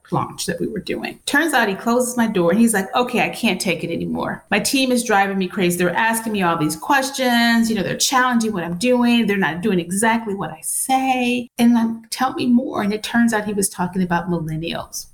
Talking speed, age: 240 wpm, 30-49